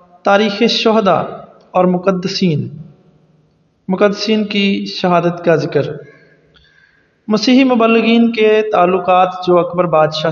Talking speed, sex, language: 95 wpm, male, English